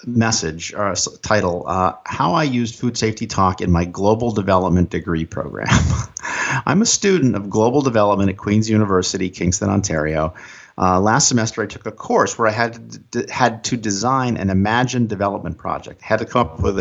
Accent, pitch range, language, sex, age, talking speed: American, 95-120 Hz, English, male, 50-69, 180 wpm